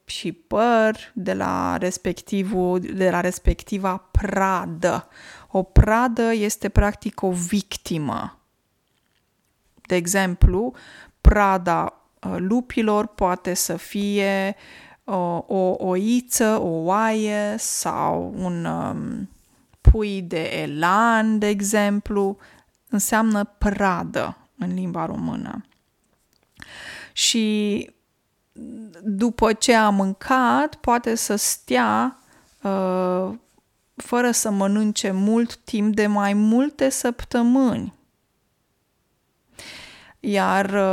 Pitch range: 190-225 Hz